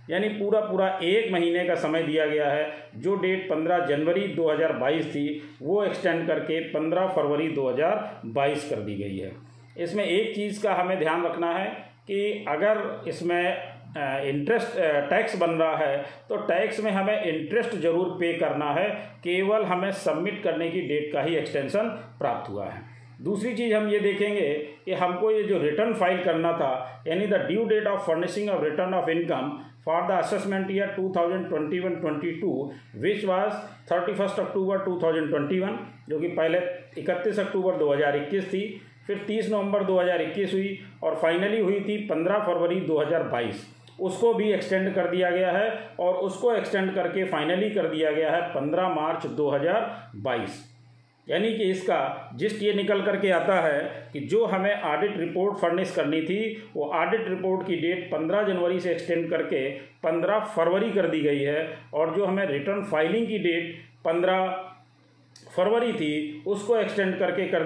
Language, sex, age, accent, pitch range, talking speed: Hindi, male, 40-59, native, 155-200 Hz, 160 wpm